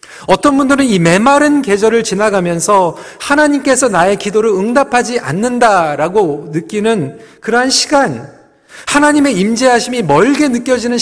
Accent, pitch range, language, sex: native, 175-255 Hz, Korean, male